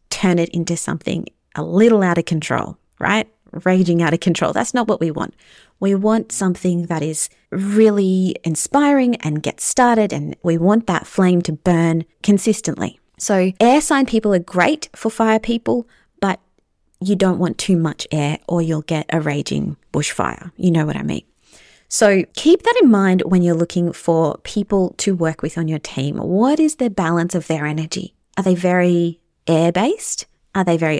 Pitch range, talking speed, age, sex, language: 165-220 Hz, 180 wpm, 30-49, female, English